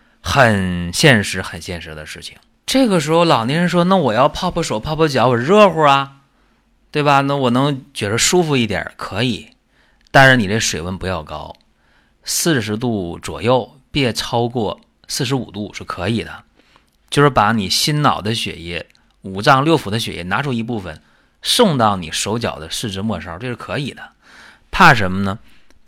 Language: Chinese